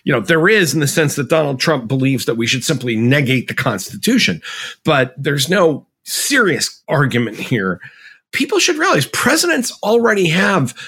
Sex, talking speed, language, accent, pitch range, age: male, 165 wpm, English, American, 120-170 Hz, 50-69